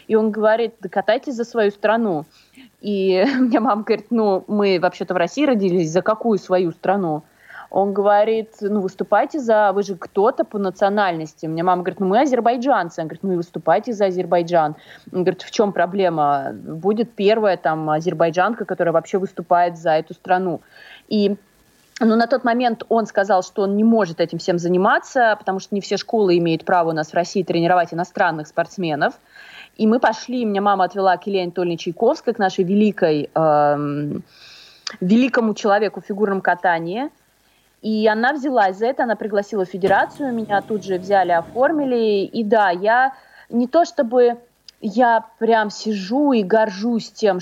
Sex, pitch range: female, 180-220 Hz